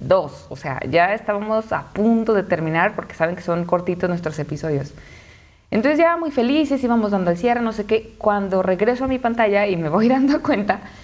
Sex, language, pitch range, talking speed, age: female, Spanish, 175-225 Hz, 200 wpm, 20-39